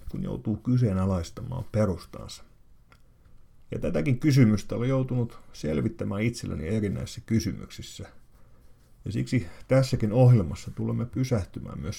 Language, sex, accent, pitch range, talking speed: Finnish, male, native, 100-125 Hz, 100 wpm